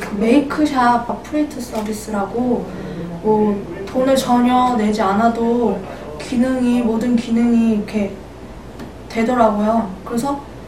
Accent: native